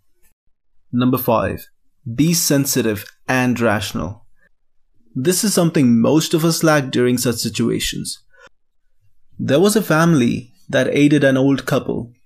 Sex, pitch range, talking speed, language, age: male, 120-140 Hz, 120 wpm, English, 30-49